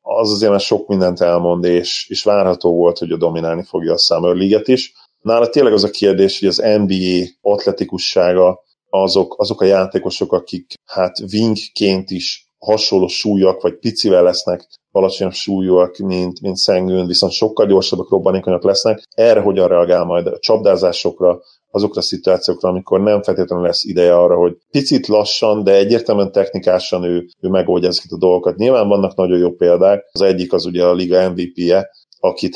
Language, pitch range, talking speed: Hungarian, 90-100 Hz, 160 wpm